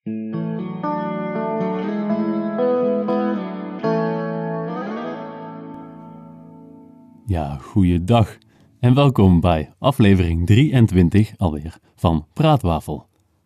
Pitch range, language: 85-110 Hz, Dutch